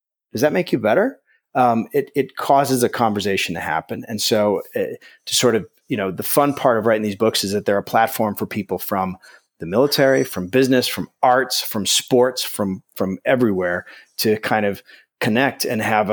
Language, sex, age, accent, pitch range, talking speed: English, male, 30-49, American, 100-130 Hz, 195 wpm